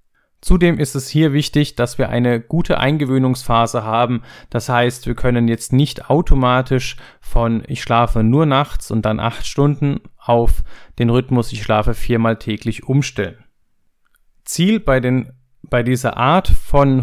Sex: male